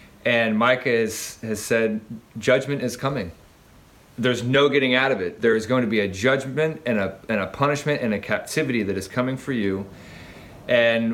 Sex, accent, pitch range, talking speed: male, American, 105-135 Hz, 190 wpm